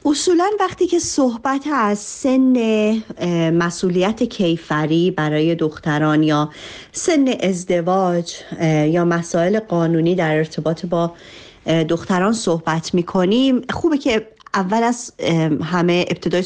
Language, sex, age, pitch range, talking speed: Persian, female, 40-59, 165-215 Hz, 100 wpm